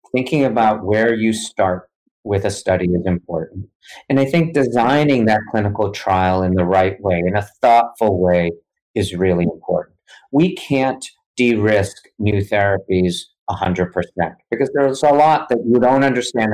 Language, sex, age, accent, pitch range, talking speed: English, male, 50-69, American, 95-115 Hz, 150 wpm